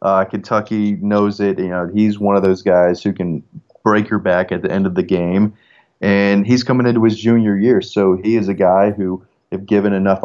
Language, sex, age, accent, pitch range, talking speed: English, male, 30-49, American, 95-105 Hz, 225 wpm